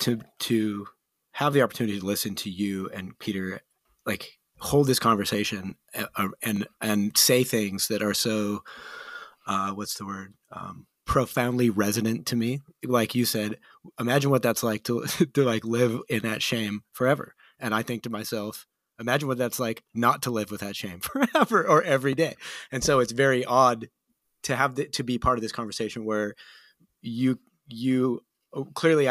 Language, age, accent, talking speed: English, 30-49, American, 175 wpm